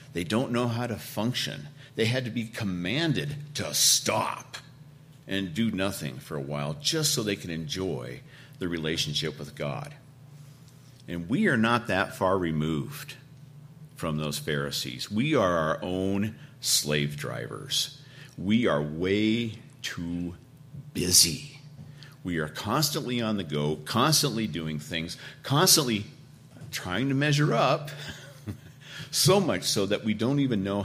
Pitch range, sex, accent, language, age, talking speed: 110-155 Hz, male, American, English, 50-69, 140 wpm